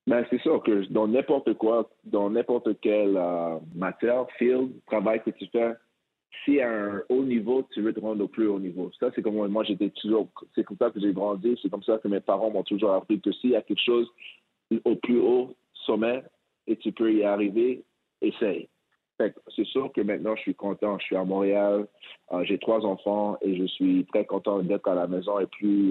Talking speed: 225 wpm